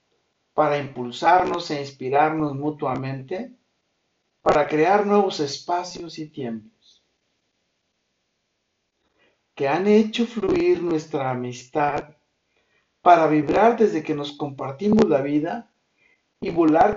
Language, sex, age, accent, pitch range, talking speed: Spanish, male, 60-79, Mexican, 140-195 Hz, 95 wpm